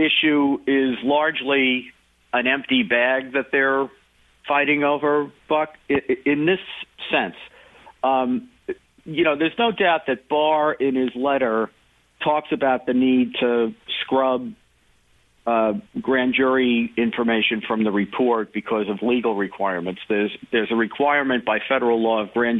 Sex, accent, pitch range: male, American, 115-150 Hz